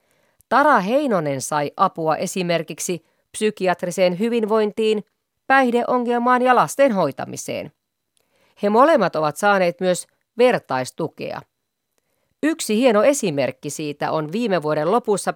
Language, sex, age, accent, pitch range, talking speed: Finnish, female, 30-49, native, 165-260 Hz, 100 wpm